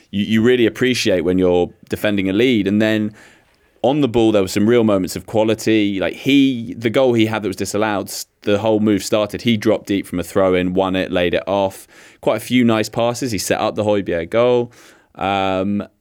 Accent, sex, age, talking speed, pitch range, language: British, male, 20-39, 215 wpm, 90-110 Hz, English